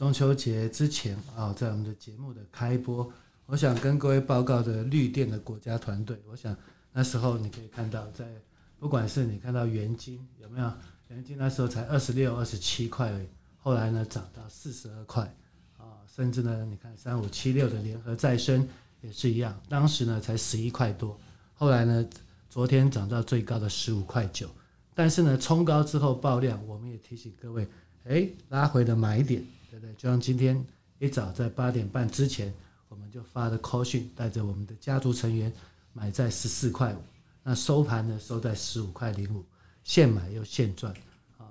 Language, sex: Chinese, male